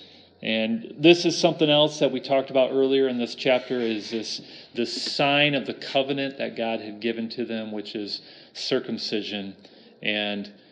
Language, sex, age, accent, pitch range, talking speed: English, male, 40-59, American, 110-135 Hz, 170 wpm